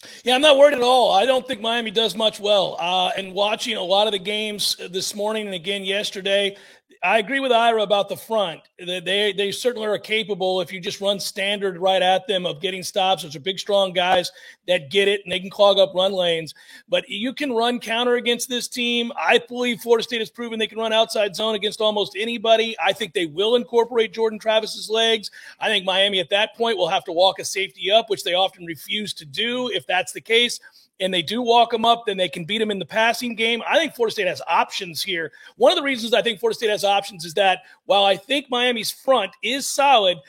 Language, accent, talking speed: English, American, 235 wpm